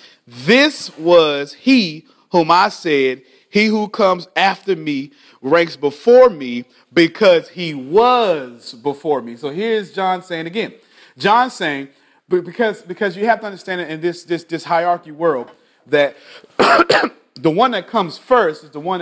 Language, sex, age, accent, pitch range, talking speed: English, male, 40-59, American, 155-225 Hz, 150 wpm